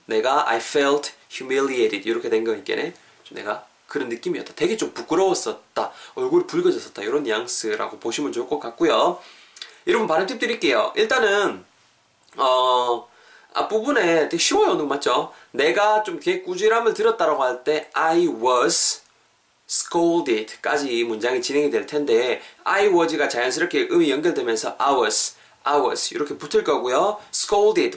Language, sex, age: Korean, male, 20-39